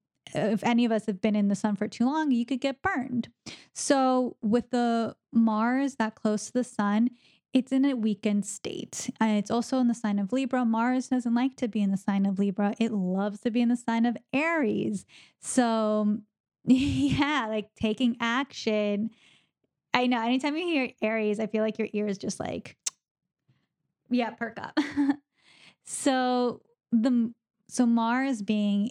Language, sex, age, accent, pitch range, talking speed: English, female, 10-29, American, 210-245 Hz, 170 wpm